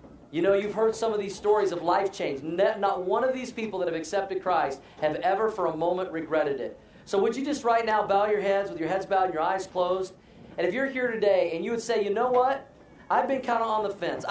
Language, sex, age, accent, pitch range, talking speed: English, male, 40-59, American, 160-210 Hz, 265 wpm